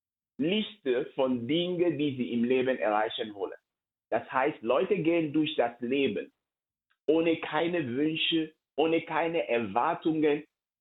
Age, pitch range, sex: 50-69, 160-215 Hz, male